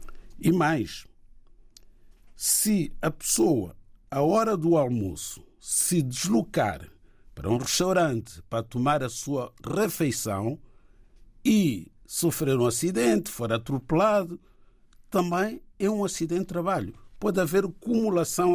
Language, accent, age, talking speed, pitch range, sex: Portuguese, Brazilian, 60-79, 110 wpm, 110-165 Hz, male